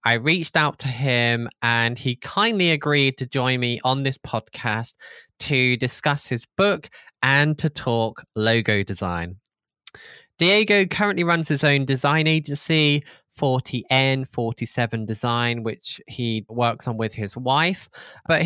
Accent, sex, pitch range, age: British, male, 120-150 Hz, 20-39